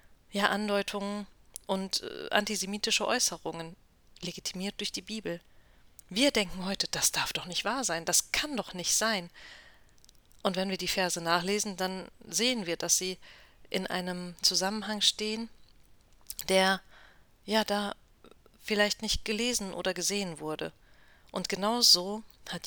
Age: 40-59